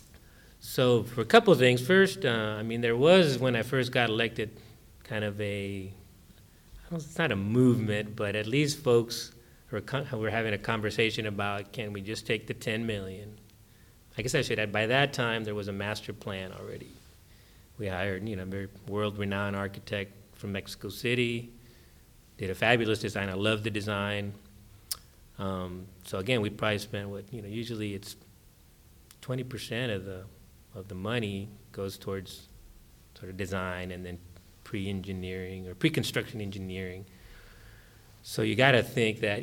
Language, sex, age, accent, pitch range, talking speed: English, male, 30-49, American, 95-115 Hz, 160 wpm